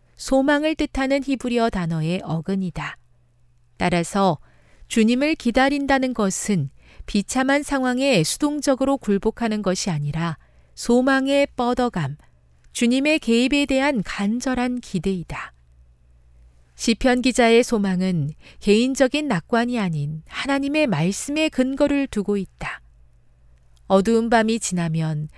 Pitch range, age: 165-255 Hz, 40-59